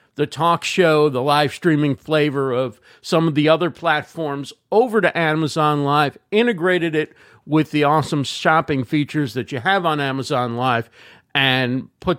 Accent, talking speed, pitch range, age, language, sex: American, 160 wpm, 145-185 Hz, 50-69, English, male